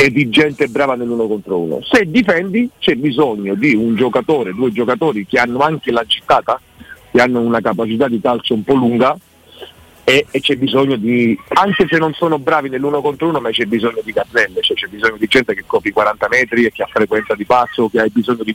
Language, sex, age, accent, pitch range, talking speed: Italian, male, 50-69, native, 120-175 Hz, 215 wpm